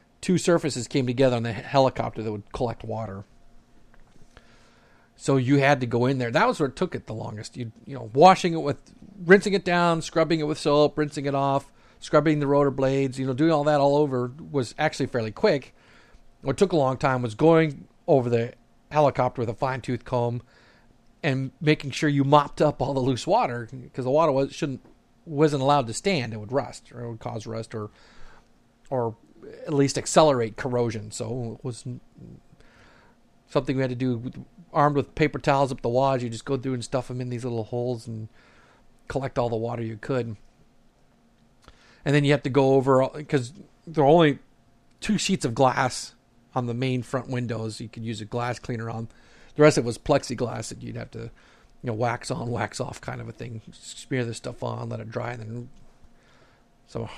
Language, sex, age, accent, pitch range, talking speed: English, male, 40-59, American, 120-145 Hz, 205 wpm